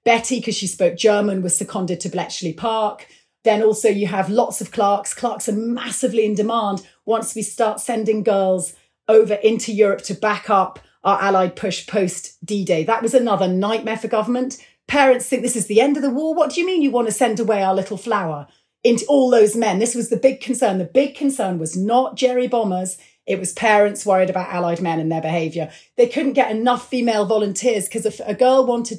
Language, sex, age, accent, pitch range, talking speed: English, female, 30-49, British, 190-230 Hz, 210 wpm